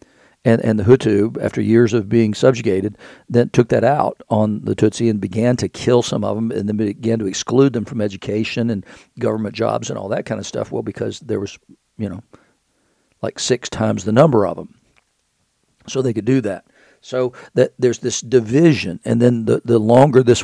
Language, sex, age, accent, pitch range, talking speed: English, male, 50-69, American, 110-130 Hz, 205 wpm